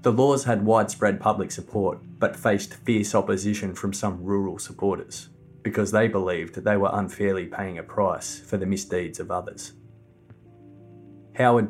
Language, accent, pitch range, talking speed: English, Australian, 95-110 Hz, 150 wpm